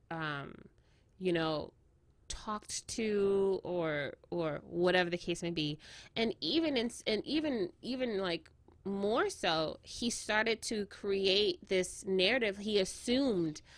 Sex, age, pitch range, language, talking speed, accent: female, 20-39, 185-225 Hz, English, 125 wpm, American